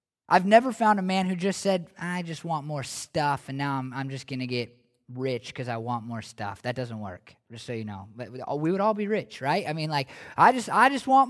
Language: English